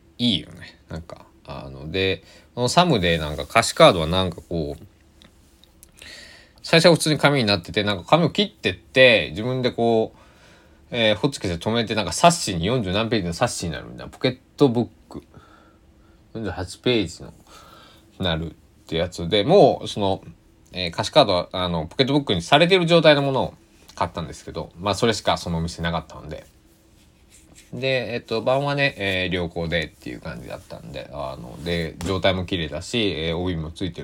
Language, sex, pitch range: Japanese, male, 80-125 Hz